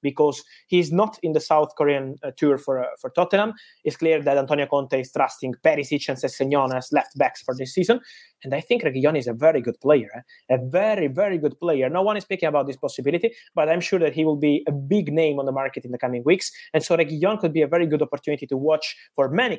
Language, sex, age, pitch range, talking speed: English, male, 20-39, 140-175 Hz, 245 wpm